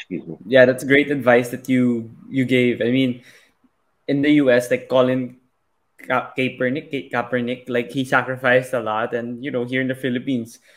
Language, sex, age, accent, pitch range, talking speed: Filipino, male, 20-39, native, 120-130 Hz, 175 wpm